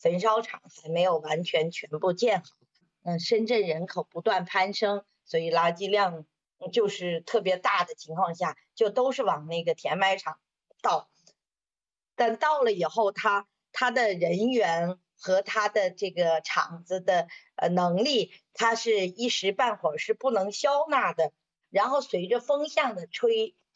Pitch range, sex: 170-235 Hz, female